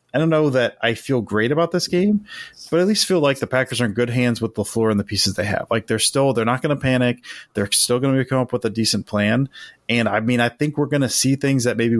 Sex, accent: male, American